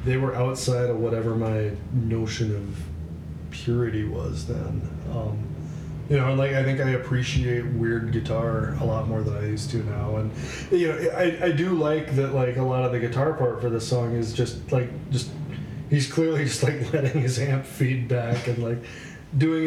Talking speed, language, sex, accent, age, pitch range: 195 wpm, English, male, American, 20-39, 120-145 Hz